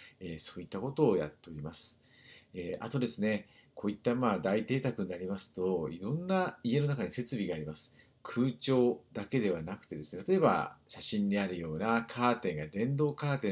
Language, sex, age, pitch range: Japanese, male, 50-69, 95-155 Hz